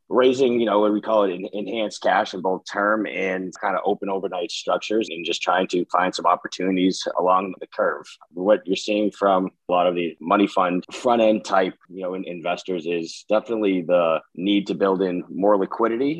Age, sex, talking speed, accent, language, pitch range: 20-39, male, 205 wpm, American, English, 85-95 Hz